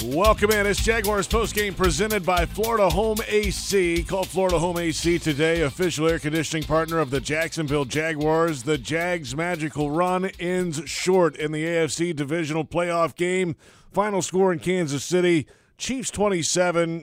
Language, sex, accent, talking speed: English, male, American, 150 wpm